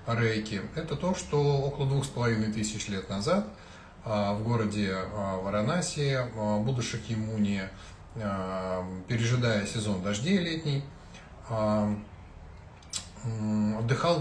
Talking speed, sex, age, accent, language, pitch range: 90 wpm, male, 20-39, native, Russian, 100-125 Hz